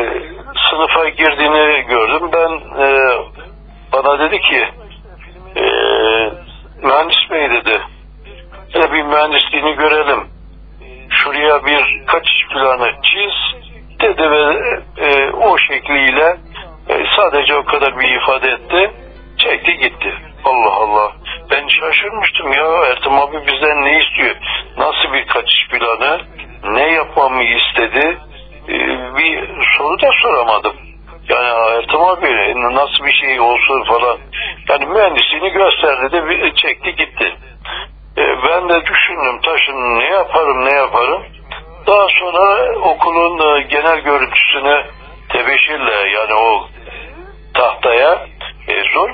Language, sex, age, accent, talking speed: Turkish, male, 60-79, native, 110 wpm